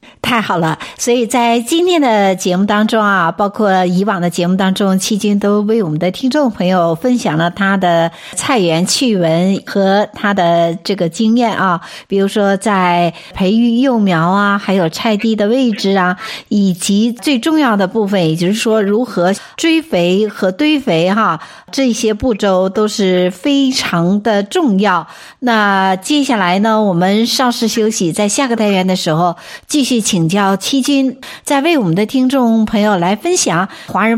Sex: female